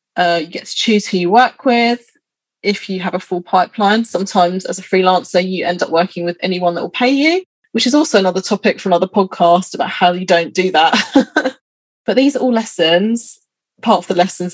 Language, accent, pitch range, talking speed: English, British, 180-235 Hz, 215 wpm